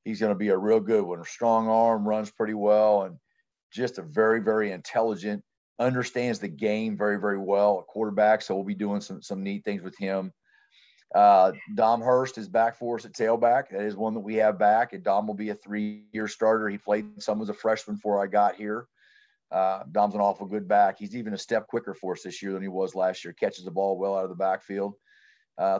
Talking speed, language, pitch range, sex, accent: 230 wpm, English, 100-115 Hz, male, American